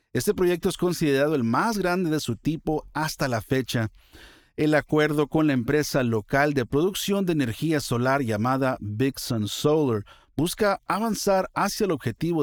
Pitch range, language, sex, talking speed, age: 120-160 Hz, Spanish, male, 160 wpm, 50-69